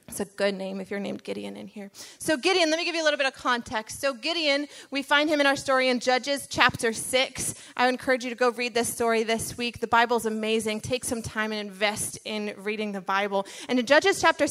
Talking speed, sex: 245 wpm, female